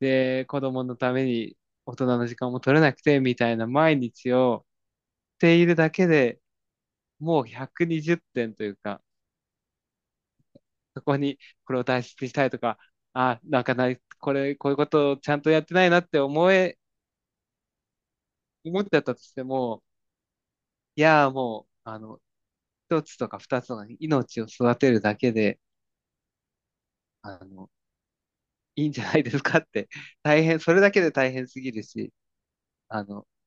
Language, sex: Japanese, male